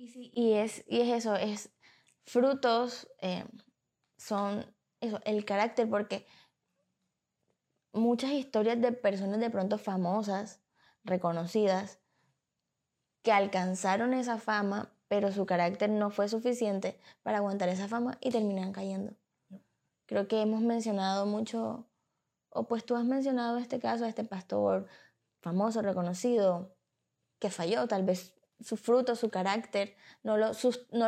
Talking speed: 120 wpm